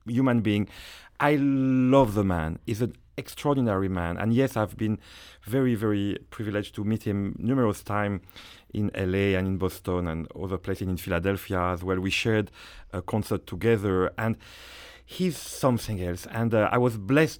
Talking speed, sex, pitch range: 165 wpm, male, 100-125 Hz